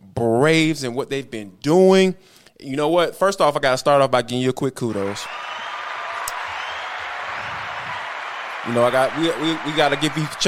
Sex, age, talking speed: male, 20-39, 175 wpm